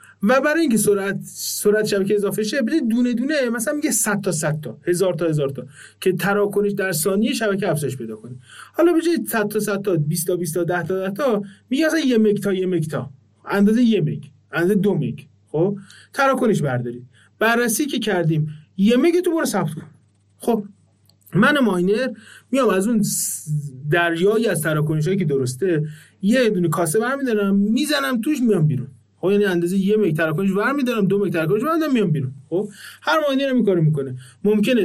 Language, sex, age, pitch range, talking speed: Persian, male, 30-49, 155-215 Hz, 175 wpm